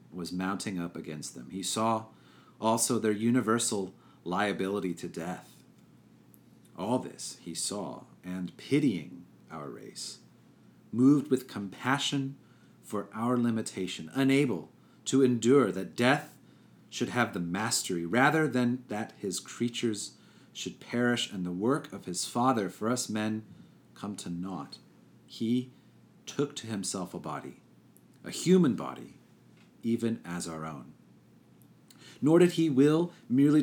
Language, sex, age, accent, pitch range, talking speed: English, male, 40-59, American, 95-135 Hz, 130 wpm